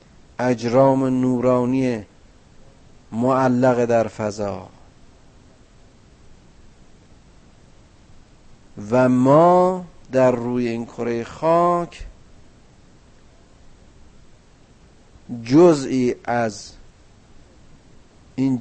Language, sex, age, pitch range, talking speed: Persian, male, 50-69, 105-130 Hz, 50 wpm